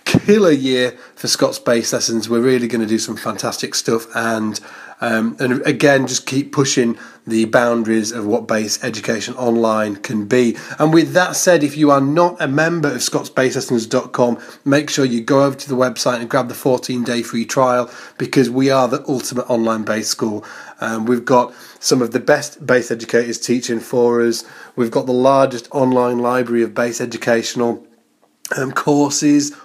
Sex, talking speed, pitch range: male, 180 wpm, 120-145 Hz